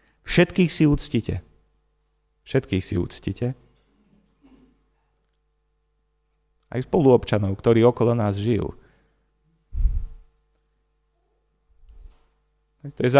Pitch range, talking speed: 95-125 Hz, 65 wpm